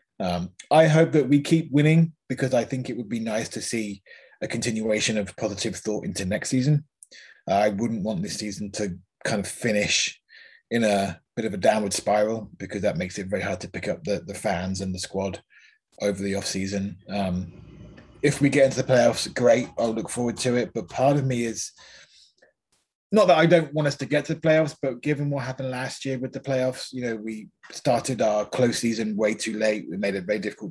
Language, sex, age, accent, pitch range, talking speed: English, male, 20-39, British, 100-135 Hz, 215 wpm